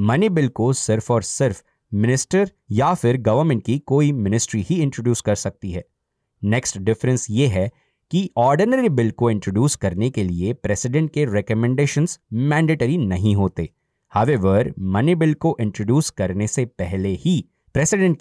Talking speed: 150 wpm